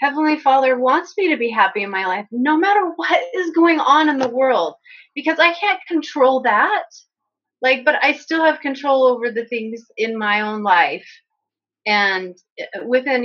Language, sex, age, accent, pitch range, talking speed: English, female, 30-49, American, 225-320 Hz, 175 wpm